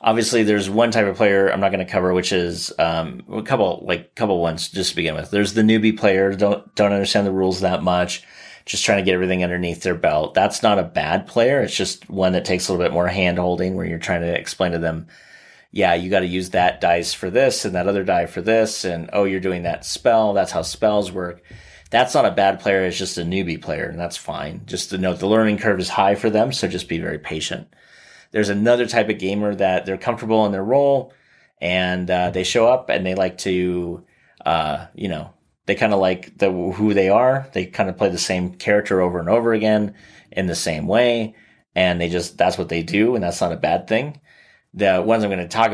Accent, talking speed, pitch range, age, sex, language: American, 240 wpm, 90-105 Hz, 30-49, male, English